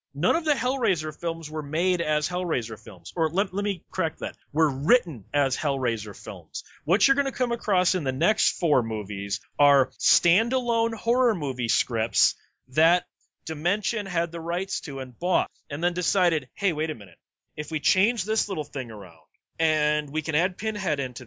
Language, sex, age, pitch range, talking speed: English, male, 30-49, 135-185 Hz, 185 wpm